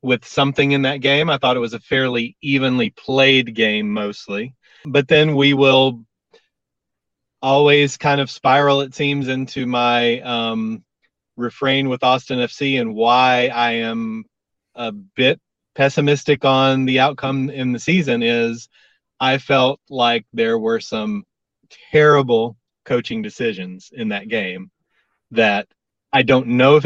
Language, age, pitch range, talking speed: English, 30-49, 115-150 Hz, 140 wpm